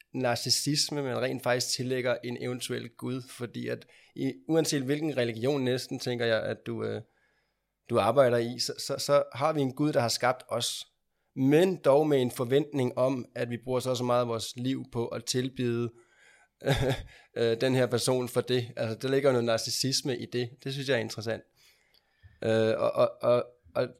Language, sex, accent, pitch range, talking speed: Danish, male, native, 115-130 Hz, 190 wpm